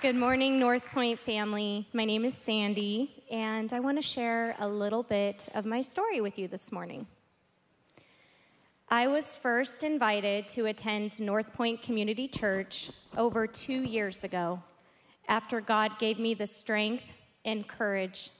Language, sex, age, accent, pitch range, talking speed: English, female, 20-39, American, 210-245 Hz, 145 wpm